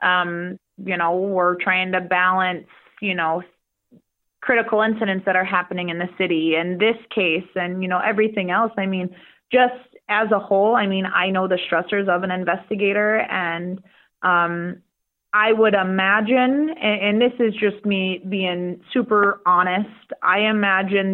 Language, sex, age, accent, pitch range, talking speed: English, female, 30-49, American, 180-205 Hz, 160 wpm